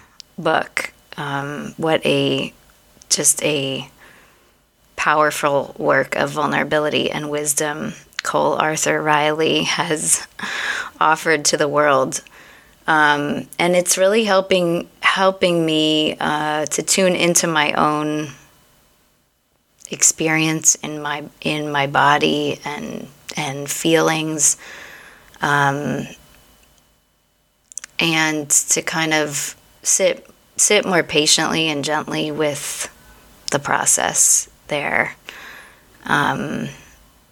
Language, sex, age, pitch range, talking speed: English, female, 20-39, 145-160 Hz, 95 wpm